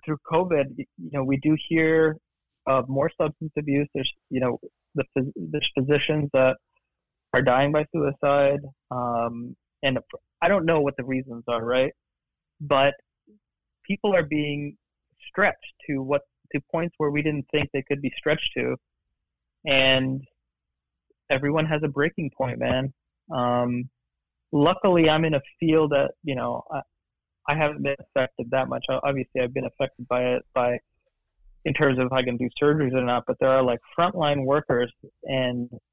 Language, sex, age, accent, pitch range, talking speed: English, male, 20-39, American, 120-145 Hz, 165 wpm